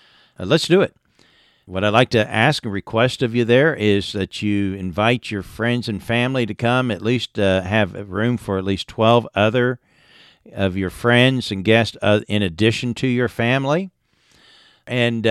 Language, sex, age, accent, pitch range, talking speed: English, male, 50-69, American, 100-125 Hz, 175 wpm